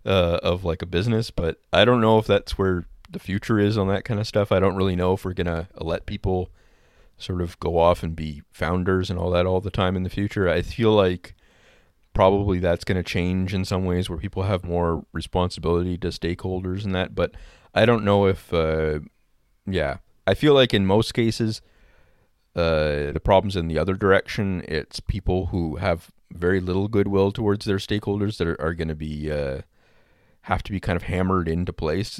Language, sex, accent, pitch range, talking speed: English, male, American, 80-100 Hz, 205 wpm